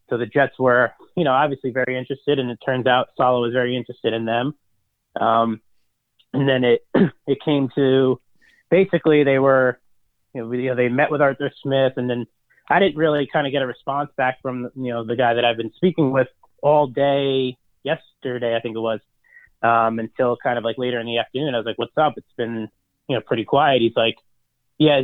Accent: American